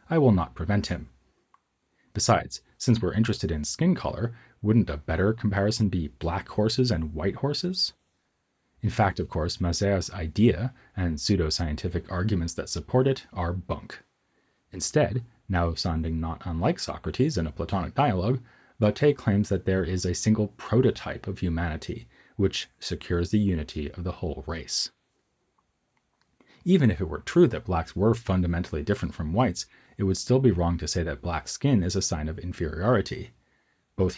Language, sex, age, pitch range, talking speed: English, male, 30-49, 85-110 Hz, 160 wpm